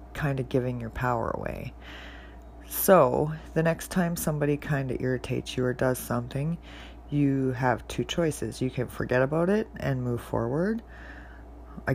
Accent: American